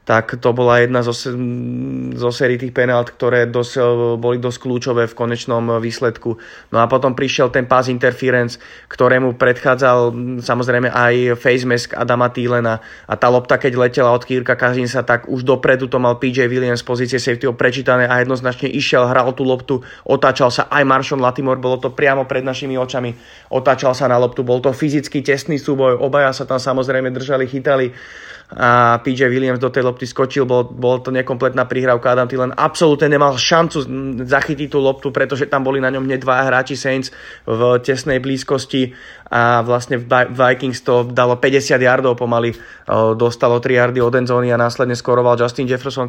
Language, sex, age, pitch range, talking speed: Slovak, male, 20-39, 120-135 Hz, 175 wpm